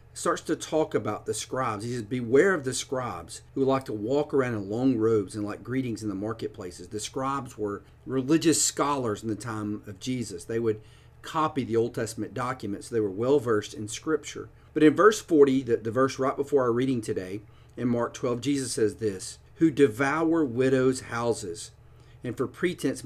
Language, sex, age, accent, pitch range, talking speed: English, male, 40-59, American, 110-135 Hz, 190 wpm